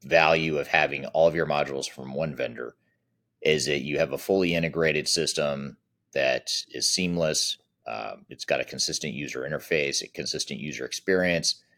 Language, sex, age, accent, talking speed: English, male, 30-49, American, 165 wpm